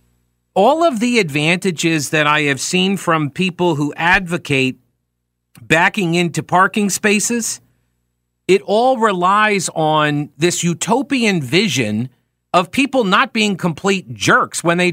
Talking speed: 125 wpm